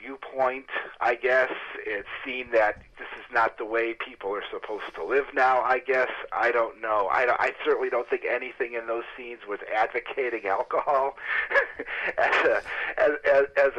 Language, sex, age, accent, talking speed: English, male, 50-69, American, 155 wpm